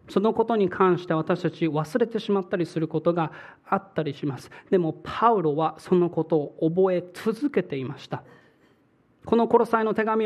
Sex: male